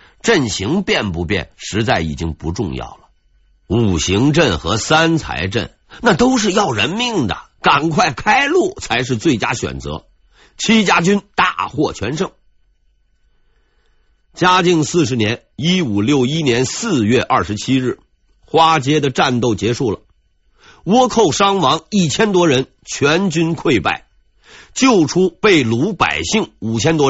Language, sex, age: Chinese, male, 50-69